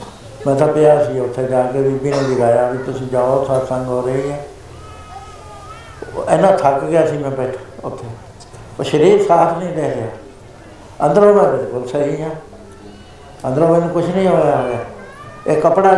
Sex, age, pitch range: male, 70-89, 130-160 Hz